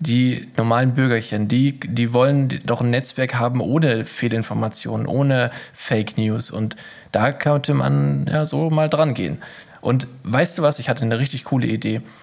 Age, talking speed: 20-39, 165 wpm